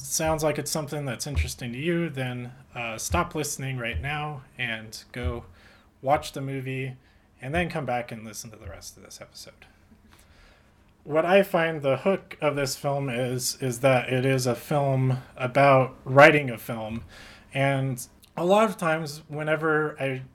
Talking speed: 170 wpm